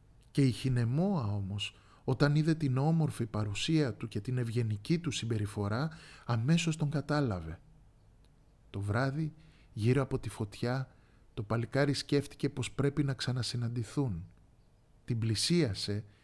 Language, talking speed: Greek, 120 wpm